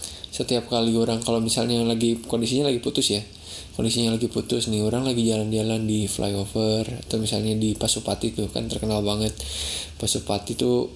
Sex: male